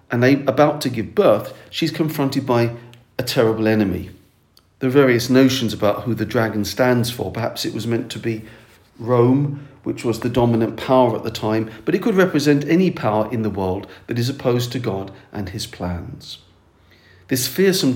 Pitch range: 105-140 Hz